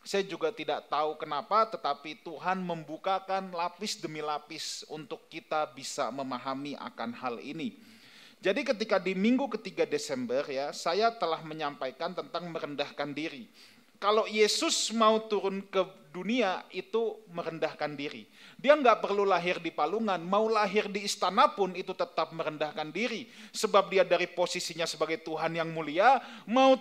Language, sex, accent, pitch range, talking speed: Indonesian, male, native, 155-215 Hz, 145 wpm